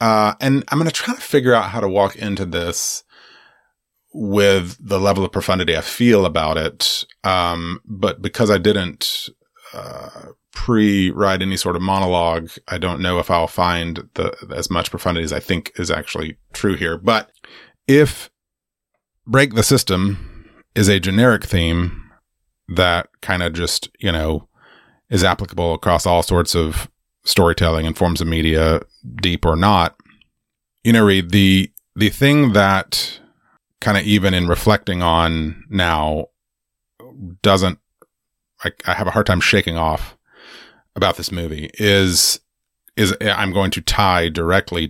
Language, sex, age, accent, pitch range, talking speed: English, male, 30-49, American, 85-105 Hz, 150 wpm